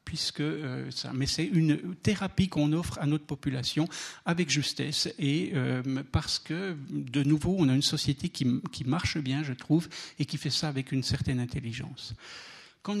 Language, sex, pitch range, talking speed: French, male, 130-155 Hz, 180 wpm